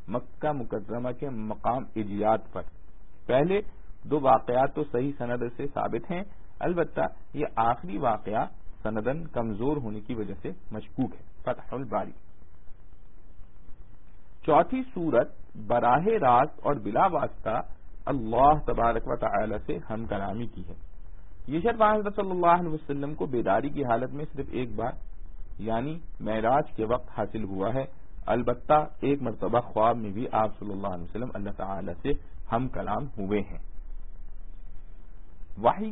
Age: 50-69